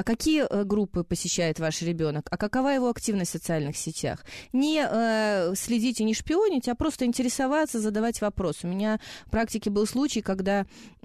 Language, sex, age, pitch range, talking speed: Russian, female, 30-49, 175-230 Hz, 165 wpm